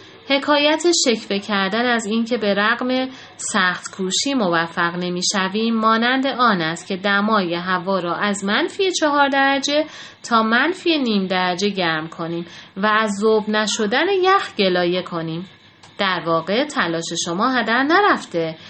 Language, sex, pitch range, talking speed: Persian, female, 180-240 Hz, 130 wpm